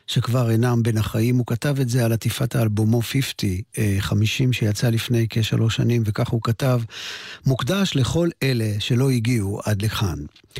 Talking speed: 155 wpm